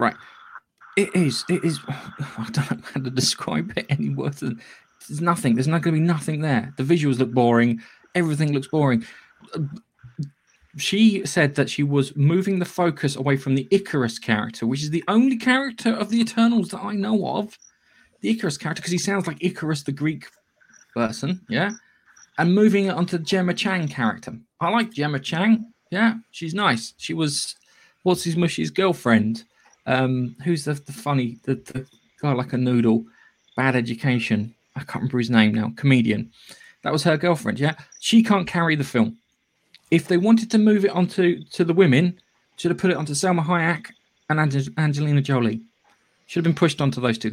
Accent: British